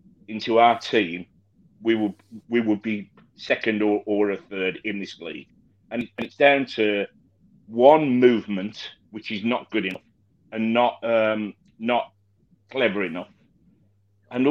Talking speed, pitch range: 145 wpm, 105-130 Hz